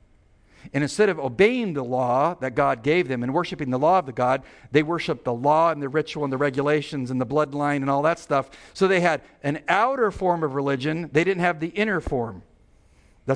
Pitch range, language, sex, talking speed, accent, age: 125-160 Hz, English, male, 225 wpm, American, 50-69